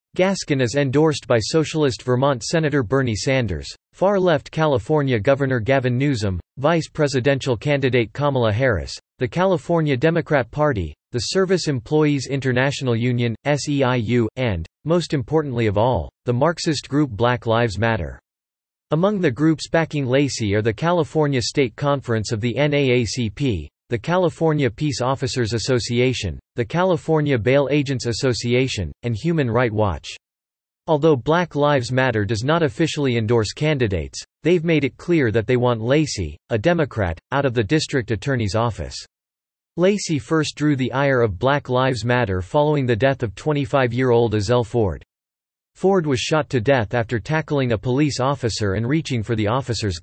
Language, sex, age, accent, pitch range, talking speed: English, male, 40-59, American, 115-150 Hz, 145 wpm